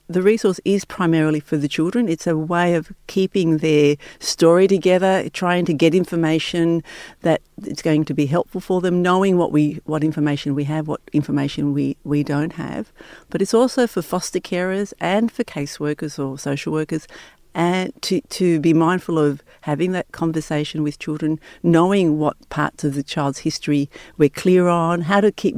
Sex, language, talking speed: female, English, 180 wpm